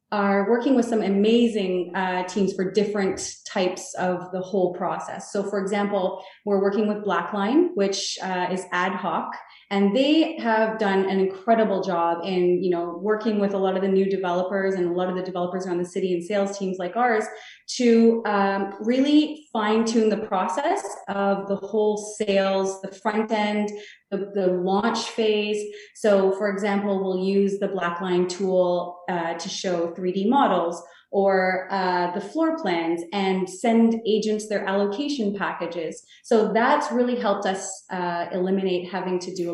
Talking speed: 170 wpm